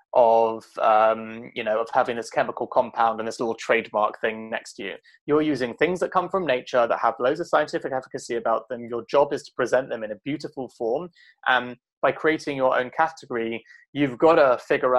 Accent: British